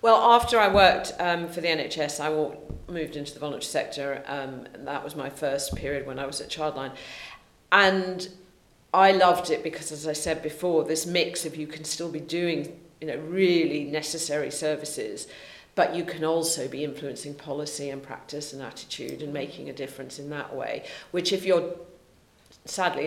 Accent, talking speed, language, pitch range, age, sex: British, 180 wpm, English, 145-175 Hz, 50-69, female